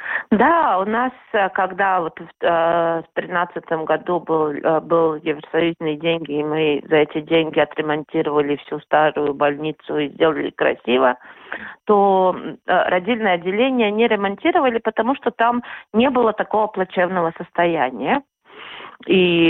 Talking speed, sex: 115 wpm, female